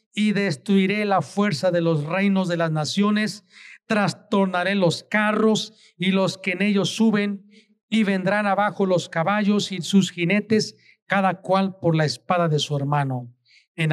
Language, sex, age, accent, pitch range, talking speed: Spanish, male, 50-69, Mexican, 150-195 Hz, 155 wpm